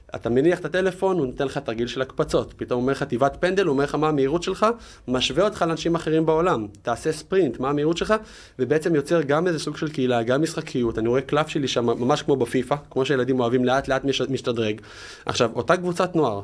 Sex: male